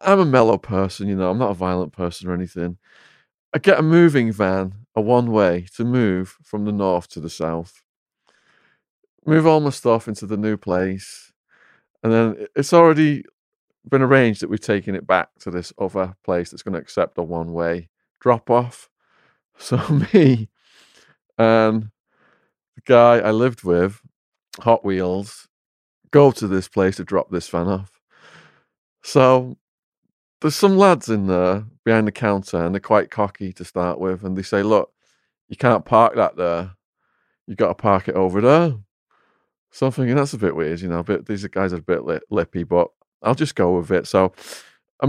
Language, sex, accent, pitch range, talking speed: English, male, British, 95-130 Hz, 180 wpm